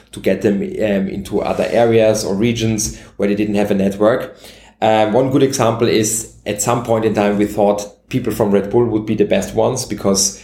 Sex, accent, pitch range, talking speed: male, German, 100-115 Hz, 215 wpm